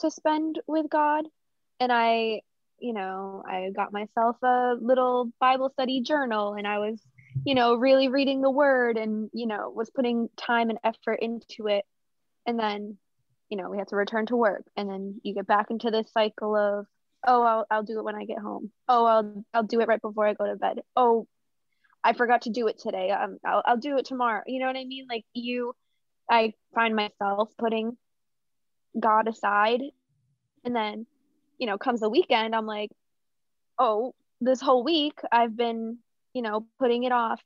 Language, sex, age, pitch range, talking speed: English, female, 20-39, 210-250 Hz, 195 wpm